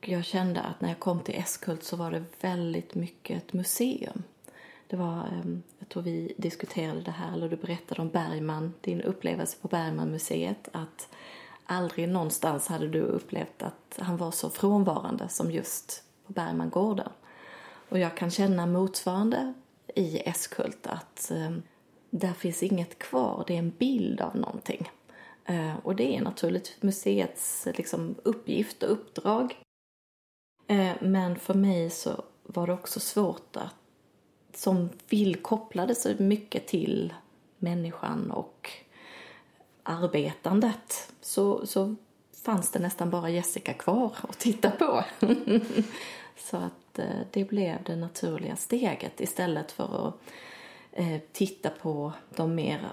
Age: 30-49